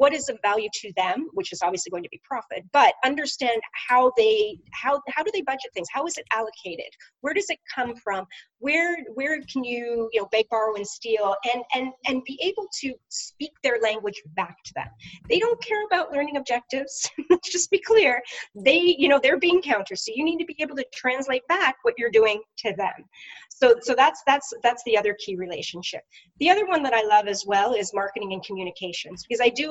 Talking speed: 215 wpm